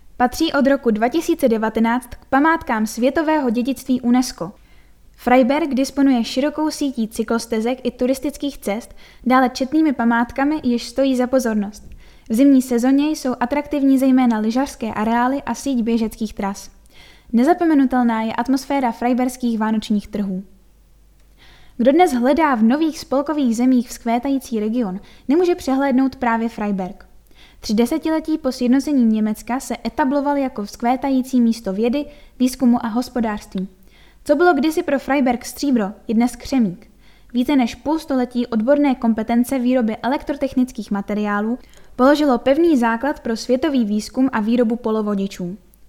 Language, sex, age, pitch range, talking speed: Czech, female, 10-29, 230-275 Hz, 125 wpm